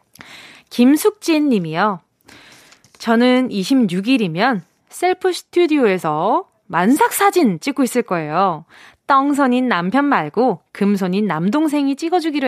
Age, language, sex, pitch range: 20-39, Korean, female, 205-320 Hz